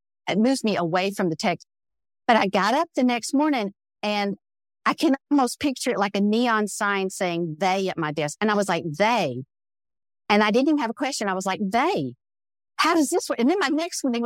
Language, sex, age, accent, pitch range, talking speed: English, female, 50-69, American, 195-285 Hz, 225 wpm